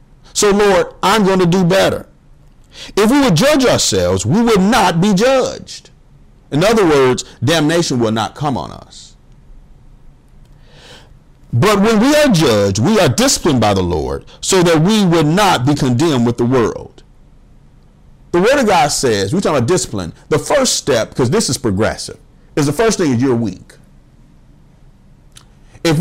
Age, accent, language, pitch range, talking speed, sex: 50-69, American, English, 130-215 Hz, 165 wpm, male